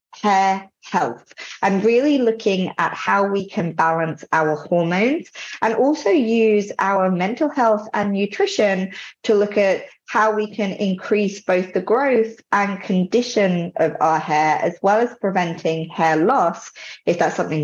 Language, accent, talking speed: English, British, 150 wpm